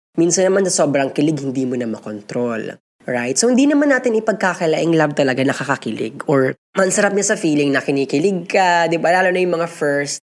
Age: 20-39